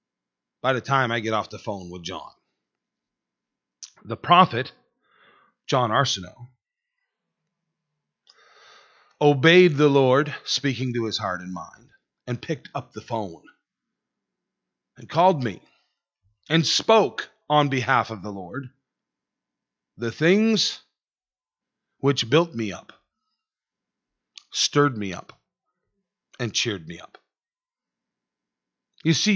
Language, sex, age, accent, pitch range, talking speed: English, male, 40-59, American, 115-175 Hz, 110 wpm